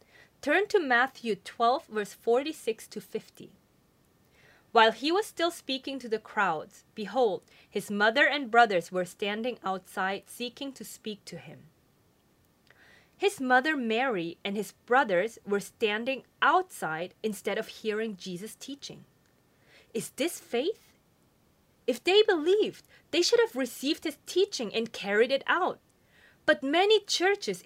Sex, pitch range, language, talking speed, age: female, 205-280 Hz, English, 135 wpm, 20-39